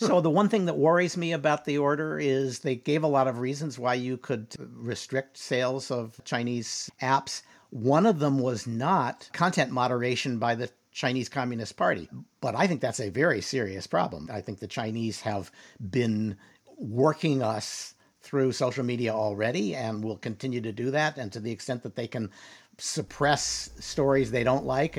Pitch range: 110-140 Hz